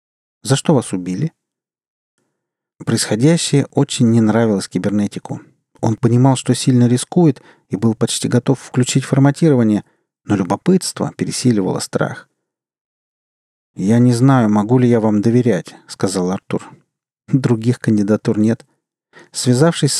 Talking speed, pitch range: 115 wpm, 110-135 Hz